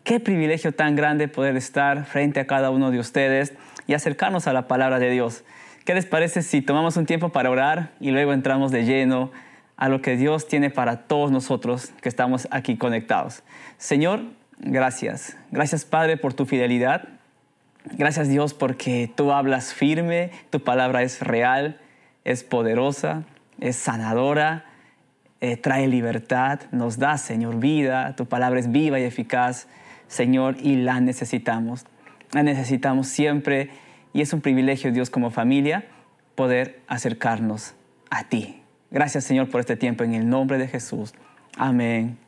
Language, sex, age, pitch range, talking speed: Spanish, male, 20-39, 125-145 Hz, 155 wpm